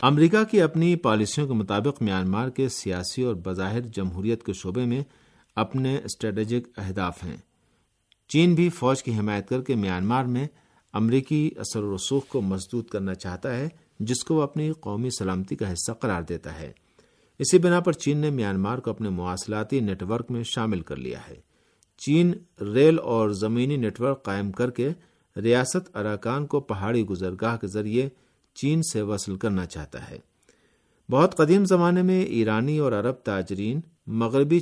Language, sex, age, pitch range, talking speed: Urdu, male, 50-69, 100-135 Hz, 165 wpm